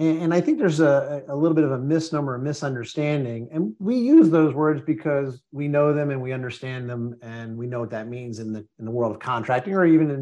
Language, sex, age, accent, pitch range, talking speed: English, male, 40-59, American, 125-155 Hz, 240 wpm